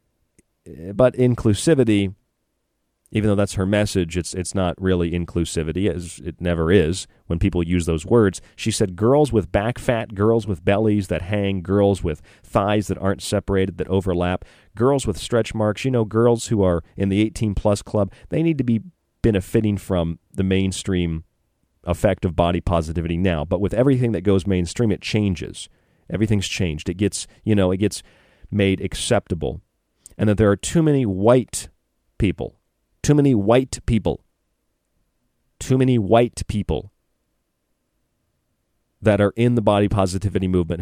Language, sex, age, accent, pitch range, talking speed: English, male, 40-59, American, 90-115 Hz, 160 wpm